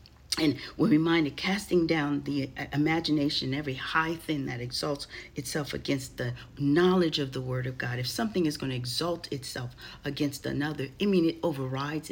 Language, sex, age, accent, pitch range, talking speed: English, female, 40-59, American, 130-155 Hz, 170 wpm